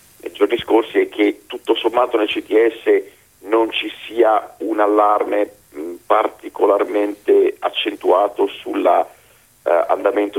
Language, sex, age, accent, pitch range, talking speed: Italian, male, 50-69, native, 355-445 Hz, 90 wpm